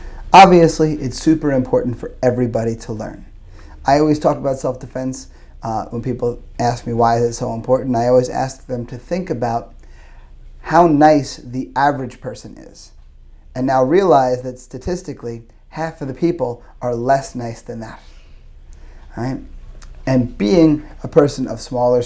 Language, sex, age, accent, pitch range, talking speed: English, male, 30-49, American, 115-130 Hz, 160 wpm